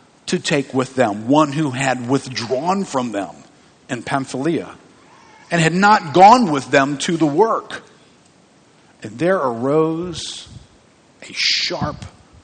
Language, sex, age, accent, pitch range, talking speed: English, male, 50-69, American, 110-140 Hz, 125 wpm